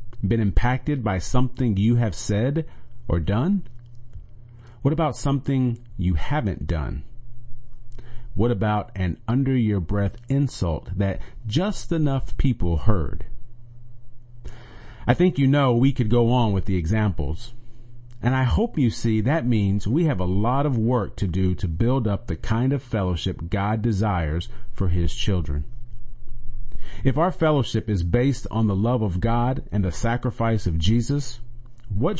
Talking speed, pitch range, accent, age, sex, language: 150 wpm, 100-125 Hz, American, 40-59, male, English